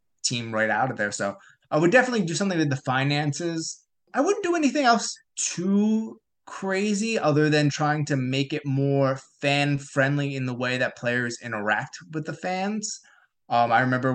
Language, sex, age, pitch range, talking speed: English, male, 20-39, 120-160 Hz, 180 wpm